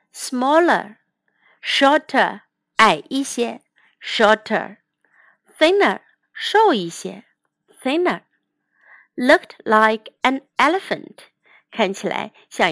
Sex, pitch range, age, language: female, 205-295 Hz, 50-69, Chinese